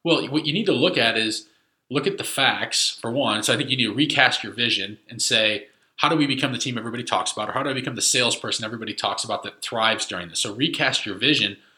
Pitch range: 115-150 Hz